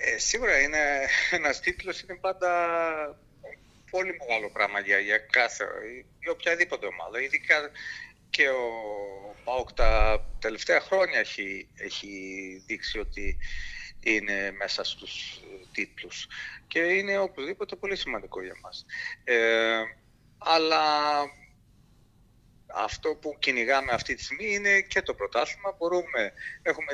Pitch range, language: 120-190 Hz, Greek